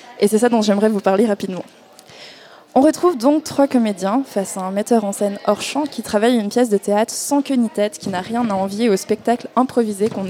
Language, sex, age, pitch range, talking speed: French, female, 20-39, 200-245 Hz, 235 wpm